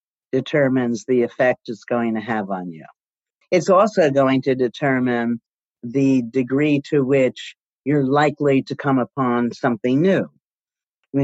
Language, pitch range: English, 120-150 Hz